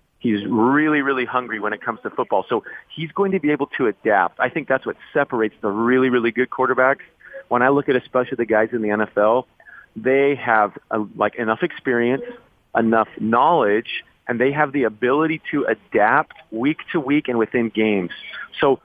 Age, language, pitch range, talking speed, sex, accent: 30-49, English, 115-145 Hz, 190 wpm, male, American